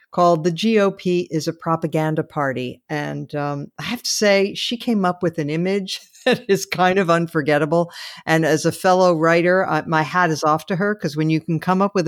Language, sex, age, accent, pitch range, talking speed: English, female, 50-69, American, 150-195 Hz, 210 wpm